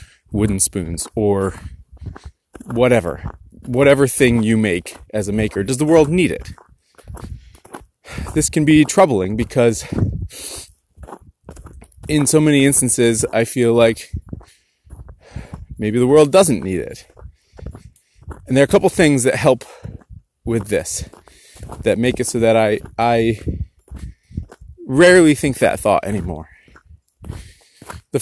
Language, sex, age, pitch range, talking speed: English, male, 30-49, 95-130 Hz, 120 wpm